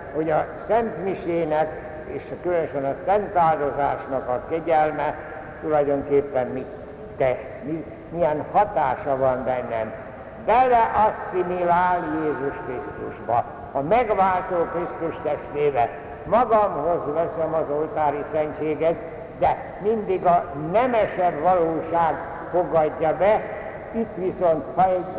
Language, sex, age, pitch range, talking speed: Hungarian, male, 60-79, 155-200 Hz, 95 wpm